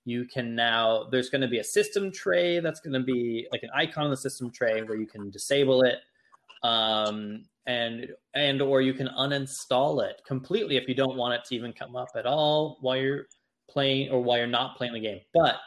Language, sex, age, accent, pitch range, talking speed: English, male, 20-39, American, 120-145 Hz, 220 wpm